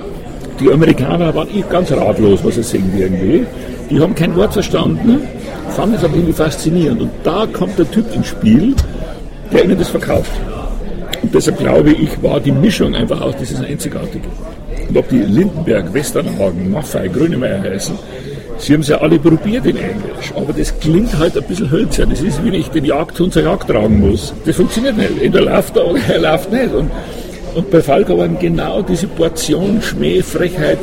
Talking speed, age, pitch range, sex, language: 185 wpm, 60-79, 135-175 Hz, male, German